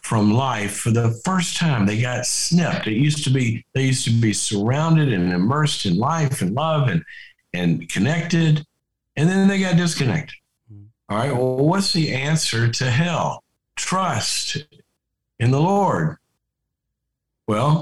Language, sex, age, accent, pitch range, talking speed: English, male, 50-69, American, 115-155 Hz, 150 wpm